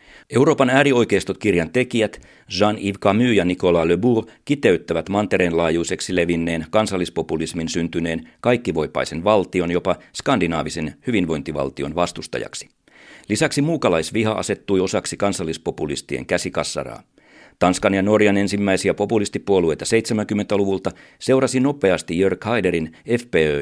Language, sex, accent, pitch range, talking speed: Finnish, male, native, 85-105 Hz, 95 wpm